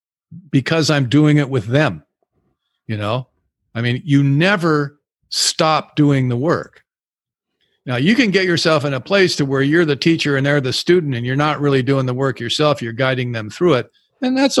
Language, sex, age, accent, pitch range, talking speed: English, male, 50-69, American, 130-185 Hz, 195 wpm